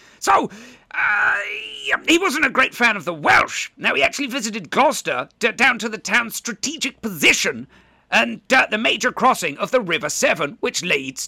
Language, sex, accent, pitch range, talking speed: English, male, British, 200-275 Hz, 170 wpm